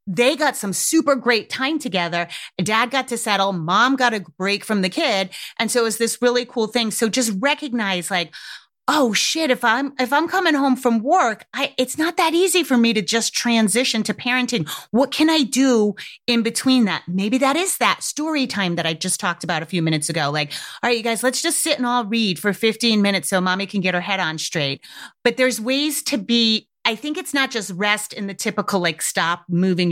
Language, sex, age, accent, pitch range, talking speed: English, female, 30-49, American, 180-245 Hz, 225 wpm